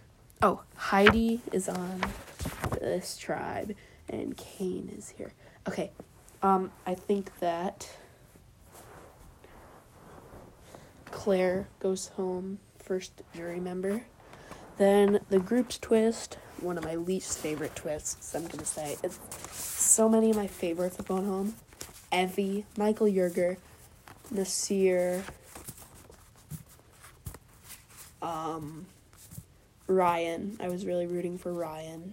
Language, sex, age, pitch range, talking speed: English, female, 20-39, 170-195 Hz, 105 wpm